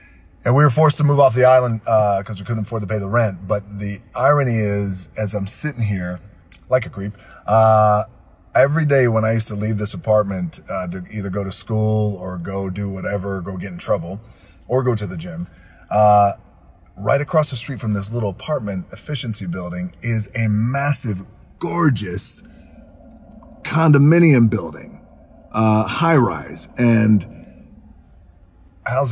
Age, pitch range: 30-49, 90-115 Hz